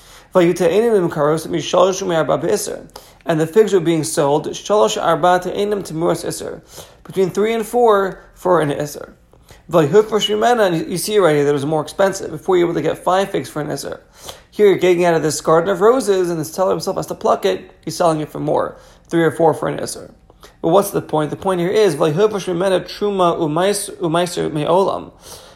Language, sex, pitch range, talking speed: English, male, 160-195 Hz, 165 wpm